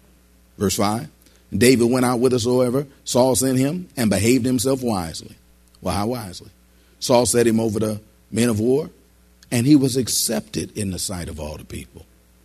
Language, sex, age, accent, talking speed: English, male, 40-59, American, 180 wpm